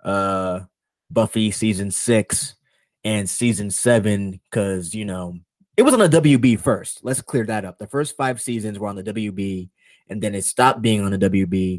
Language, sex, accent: English, male, American